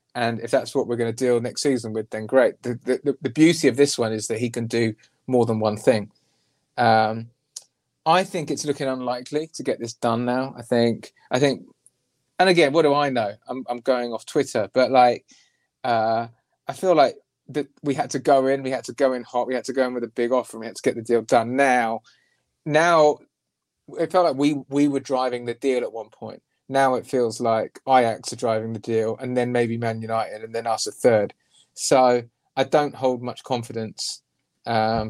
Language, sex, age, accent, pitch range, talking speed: English, male, 20-39, British, 115-135 Hz, 220 wpm